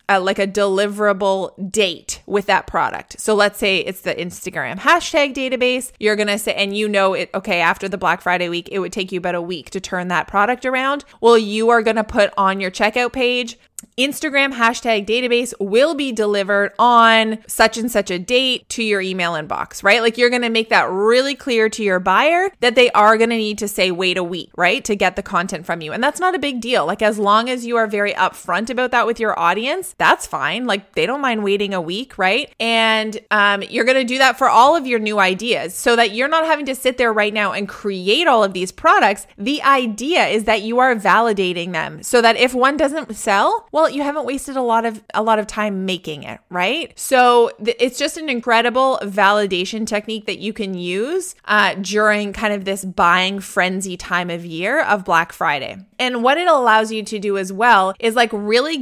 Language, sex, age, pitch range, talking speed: English, female, 20-39, 195-245 Hz, 220 wpm